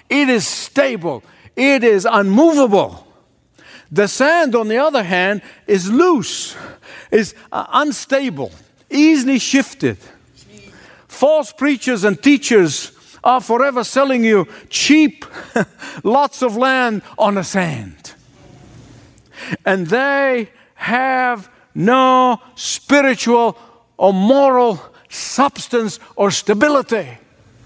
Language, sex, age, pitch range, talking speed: English, male, 60-79, 175-255 Hz, 95 wpm